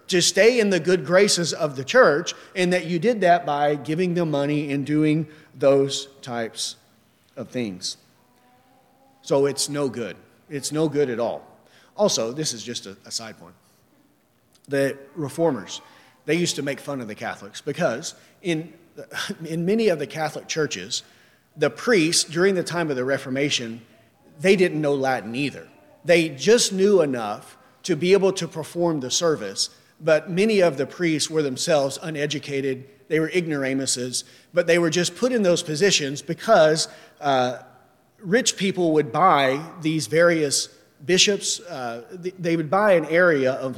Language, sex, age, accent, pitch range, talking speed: English, male, 40-59, American, 140-175 Hz, 160 wpm